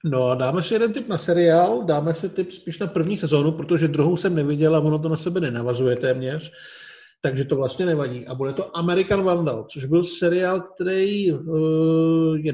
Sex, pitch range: male, 145-170 Hz